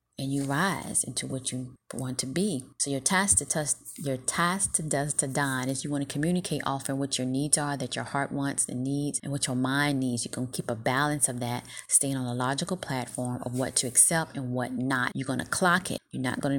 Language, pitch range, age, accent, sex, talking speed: English, 130-150 Hz, 30-49, American, female, 255 wpm